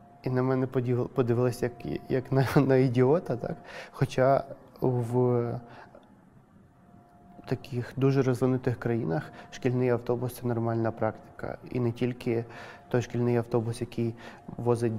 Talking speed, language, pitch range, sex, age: 115 wpm, Ukrainian, 115-125 Hz, male, 20-39